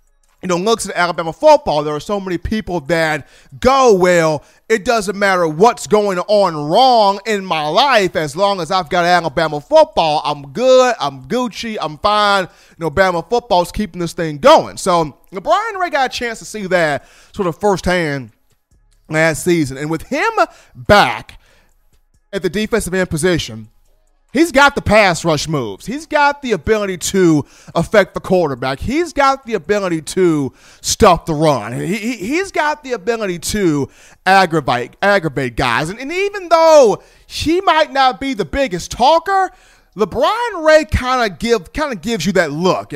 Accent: American